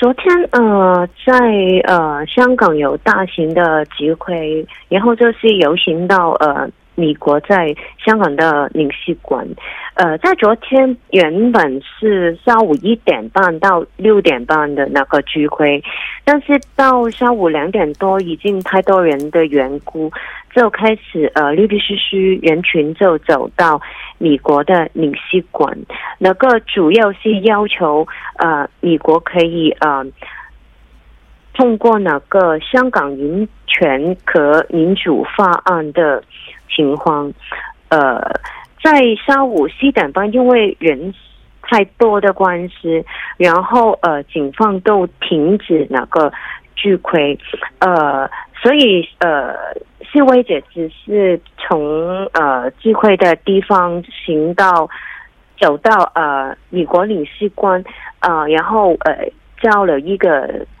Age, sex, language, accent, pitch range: 30-49, female, Korean, Chinese, 155-215 Hz